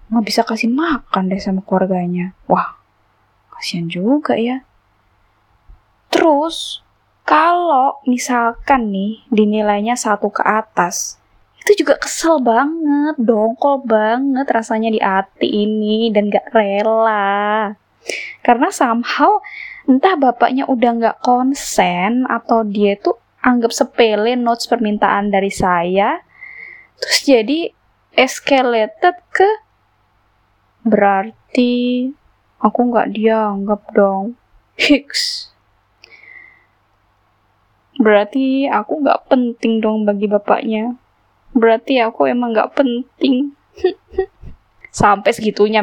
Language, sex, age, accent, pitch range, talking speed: Indonesian, female, 10-29, native, 200-275 Hz, 95 wpm